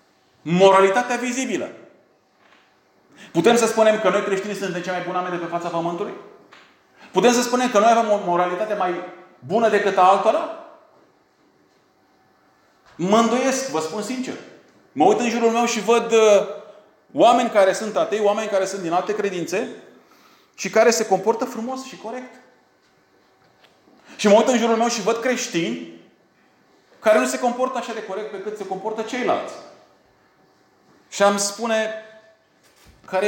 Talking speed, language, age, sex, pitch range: 150 wpm, Romanian, 30-49, male, 170-230 Hz